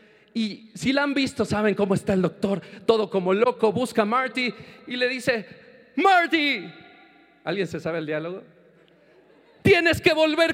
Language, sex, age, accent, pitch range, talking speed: Italian, male, 40-59, Mexican, 185-270 Hz, 160 wpm